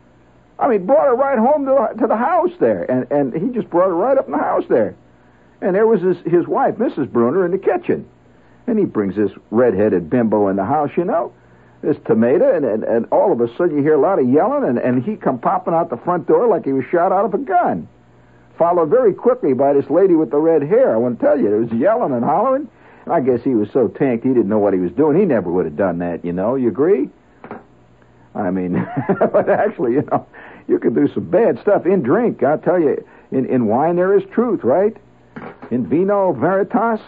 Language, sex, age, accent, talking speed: English, male, 60-79, American, 240 wpm